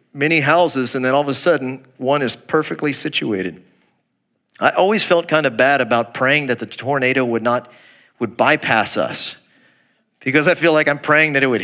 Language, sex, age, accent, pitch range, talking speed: English, male, 40-59, American, 125-170 Hz, 190 wpm